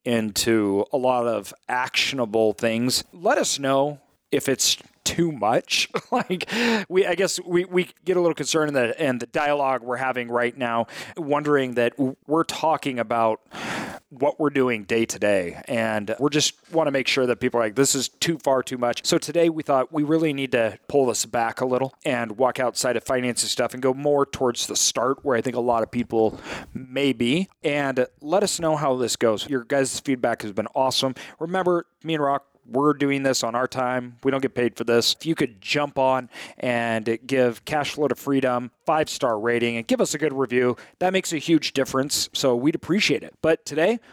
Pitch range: 120-155 Hz